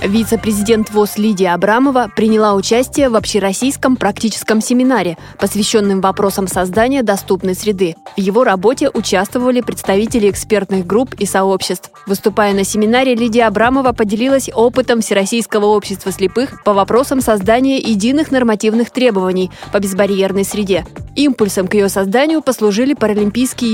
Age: 20-39